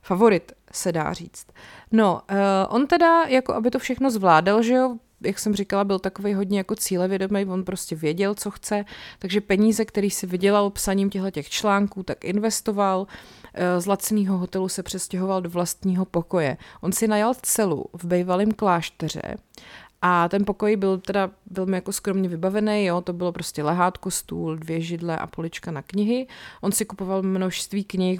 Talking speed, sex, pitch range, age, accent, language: 165 wpm, female, 180-205 Hz, 30-49, native, Czech